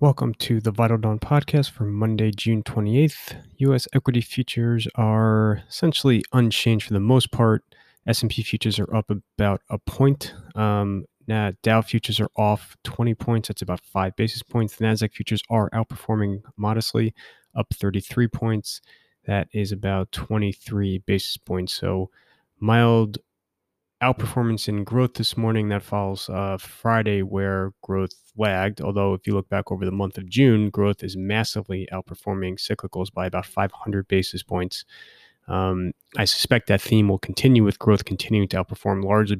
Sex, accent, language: male, American, English